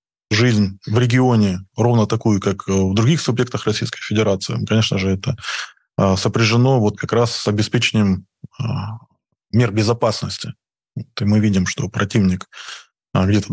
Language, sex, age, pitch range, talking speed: Russian, male, 20-39, 100-120 Hz, 120 wpm